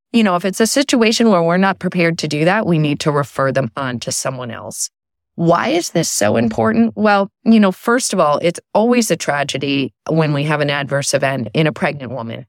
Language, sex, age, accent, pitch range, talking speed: English, female, 30-49, American, 135-185 Hz, 225 wpm